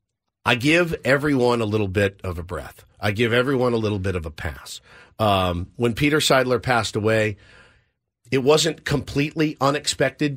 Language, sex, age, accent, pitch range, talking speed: English, male, 50-69, American, 110-135 Hz, 160 wpm